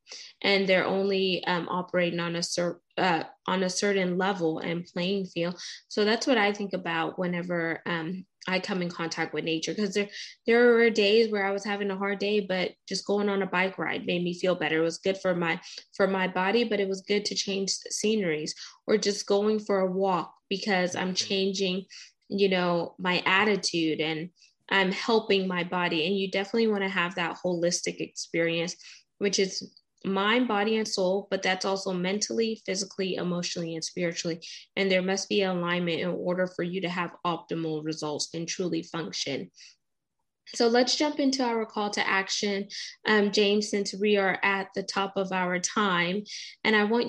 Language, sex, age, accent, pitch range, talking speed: English, female, 20-39, American, 175-205 Hz, 190 wpm